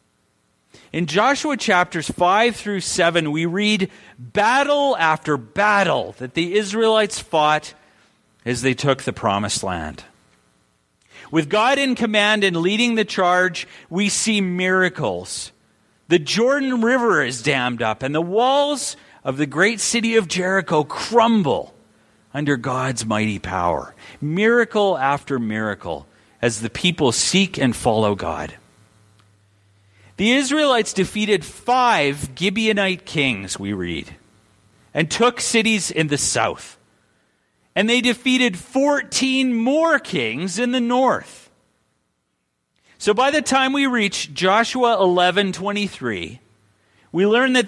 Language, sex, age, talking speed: English, male, 40-59, 120 wpm